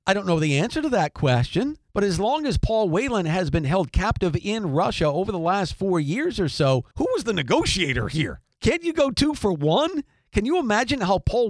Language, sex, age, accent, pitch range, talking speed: English, male, 50-69, American, 150-205 Hz, 225 wpm